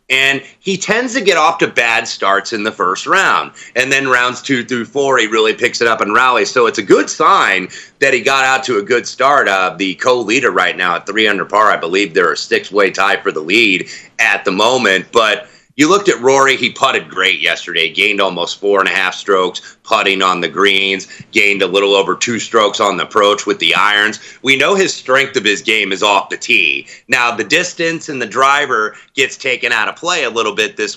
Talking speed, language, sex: 230 wpm, English, male